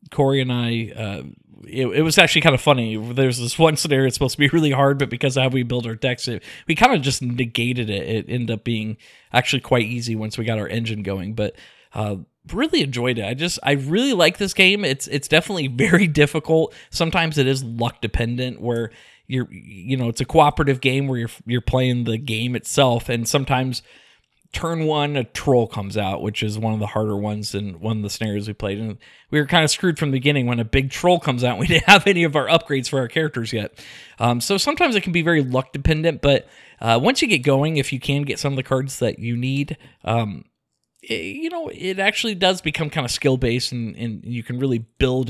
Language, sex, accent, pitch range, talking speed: English, male, American, 115-150 Hz, 235 wpm